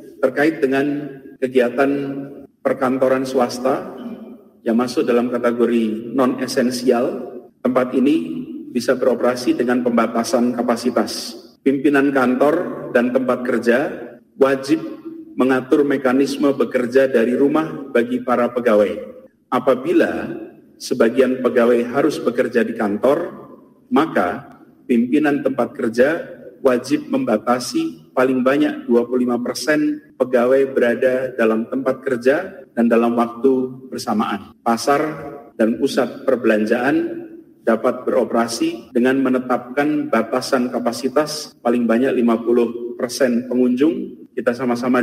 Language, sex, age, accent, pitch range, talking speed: Indonesian, male, 40-59, native, 120-145 Hz, 100 wpm